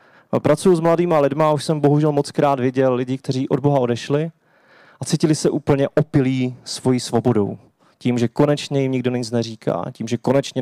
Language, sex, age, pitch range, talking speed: Czech, male, 30-49, 130-165 Hz, 175 wpm